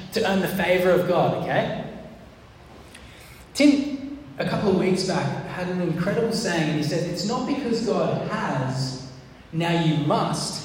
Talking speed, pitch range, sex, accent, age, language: 150 wpm, 150-195 Hz, male, Australian, 10-29, English